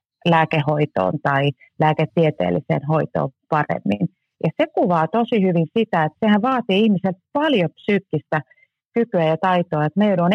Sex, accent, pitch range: female, native, 155-205 Hz